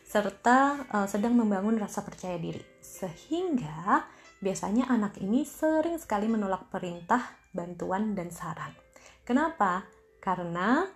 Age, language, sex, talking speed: 20-39, Indonesian, female, 110 wpm